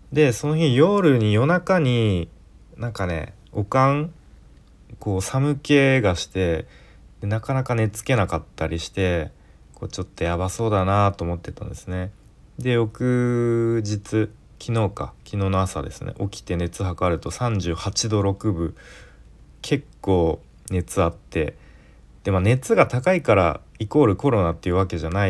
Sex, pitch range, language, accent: male, 85-115 Hz, Japanese, native